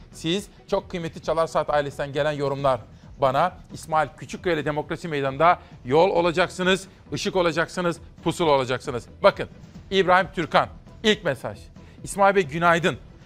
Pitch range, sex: 145-180 Hz, male